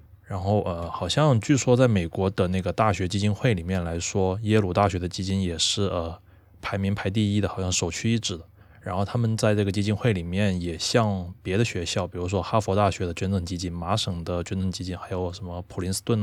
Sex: male